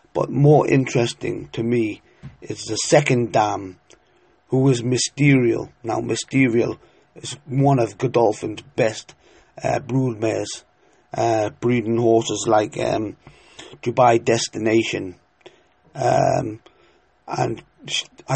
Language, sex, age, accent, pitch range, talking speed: English, male, 30-49, British, 115-140 Hz, 100 wpm